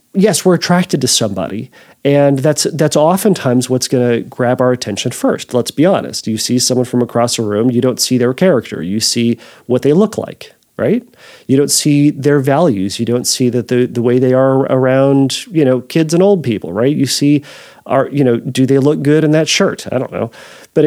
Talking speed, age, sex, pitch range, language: 220 wpm, 40-59, male, 120-150 Hz, English